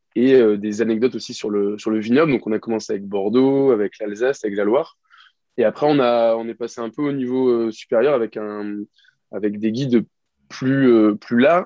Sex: male